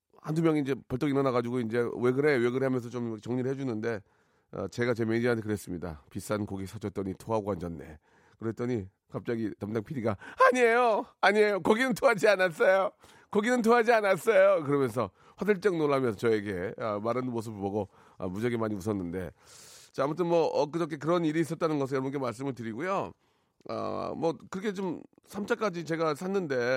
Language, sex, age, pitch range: Korean, male, 40-59, 115-175 Hz